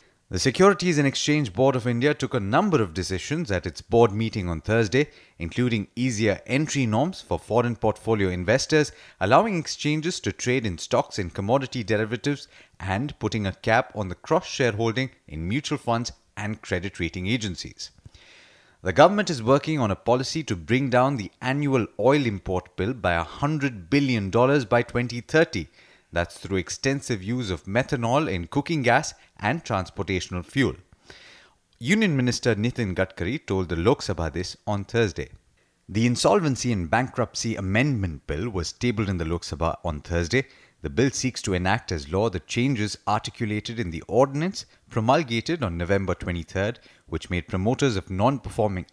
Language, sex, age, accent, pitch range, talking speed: English, male, 30-49, Indian, 95-130 Hz, 155 wpm